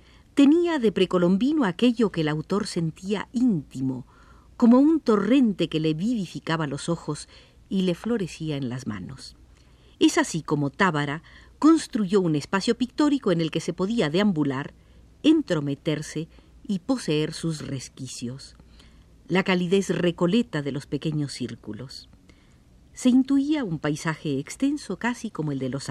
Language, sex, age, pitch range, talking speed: Spanish, female, 50-69, 145-230 Hz, 135 wpm